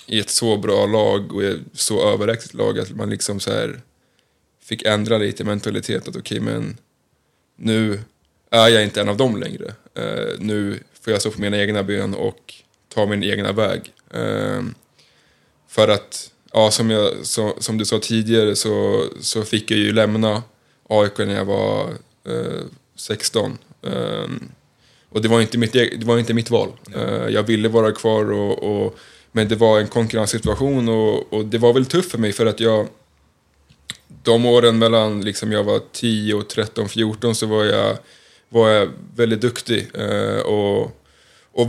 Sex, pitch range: male, 105-115 Hz